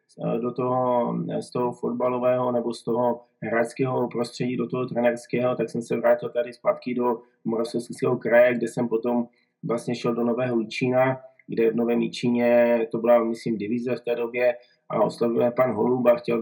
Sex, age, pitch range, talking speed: male, 20-39, 120-130 Hz, 170 wpm